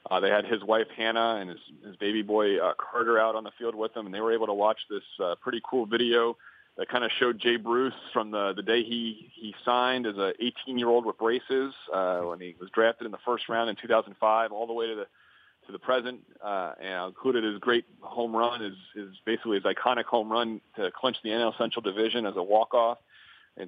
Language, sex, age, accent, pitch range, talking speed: English, male, 40-59, American, 110-125 Hz, 230 wpm